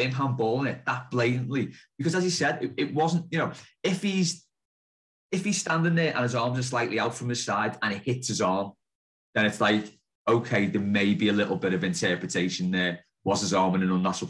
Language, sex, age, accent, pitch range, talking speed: English, male, 30-49, British, 105-155 Hz, 225 wpm